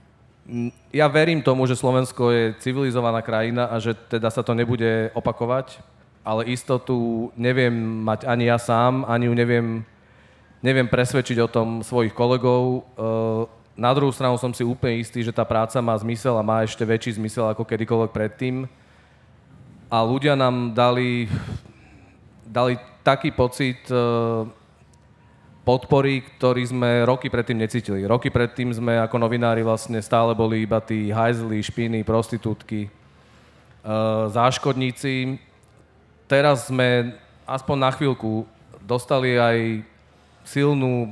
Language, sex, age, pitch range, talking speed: Slovak, male, 30-49, 115-125 Hz, 125 wpm